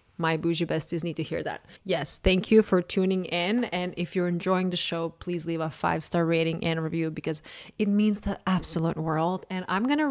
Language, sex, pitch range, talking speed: English, female, 165-190 Hz, 210 wpm